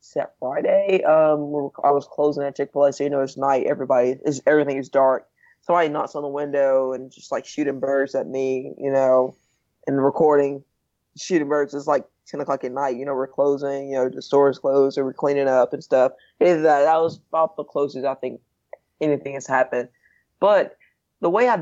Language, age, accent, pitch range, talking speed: English, 20-39, American, 135-150 Hz, 205 wpm